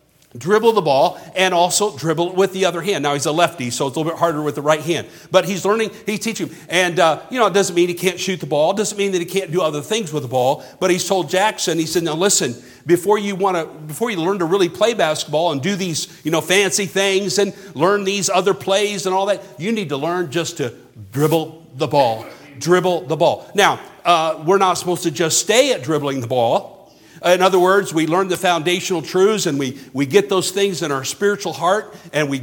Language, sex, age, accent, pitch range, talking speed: English, male, 50-69, American, 150-190 Hz, 240 wpm